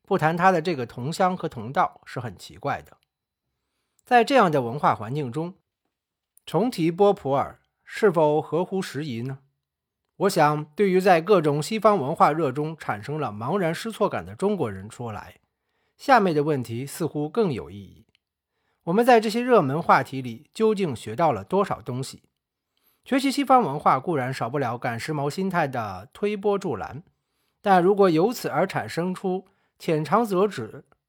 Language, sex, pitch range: Chinese, male, 140-205 Hz